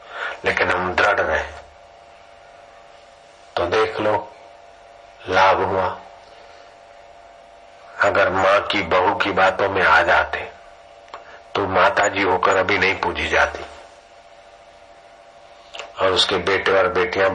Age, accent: 50-69, native